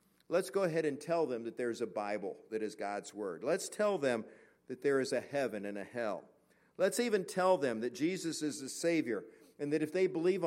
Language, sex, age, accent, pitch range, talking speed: English, male, 50-69, American, 110-150 Hz, 225 wpm